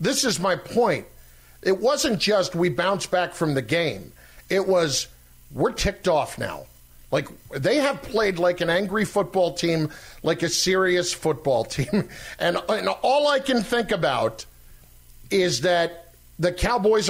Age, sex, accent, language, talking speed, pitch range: 50-69, male, American, English, 155 wpm, 155-210 Hz